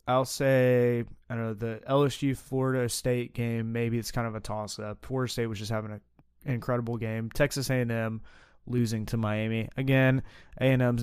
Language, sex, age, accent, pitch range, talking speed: English, male, 20-39, American, 110-135 Hz, 165 wpm